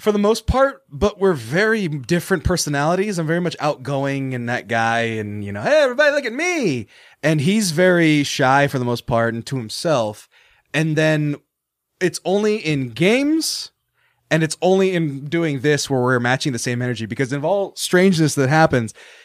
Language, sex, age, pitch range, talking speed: English, male, 20-39, 125-175 Hz, 185 wpm